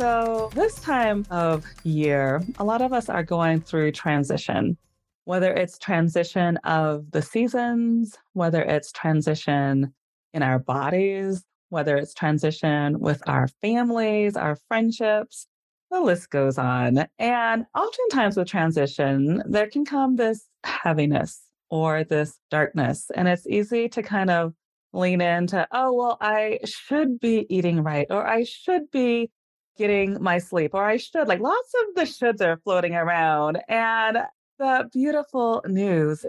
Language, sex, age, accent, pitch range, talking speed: English, female, 30-49, American, 160-230 Hz, 140 wpm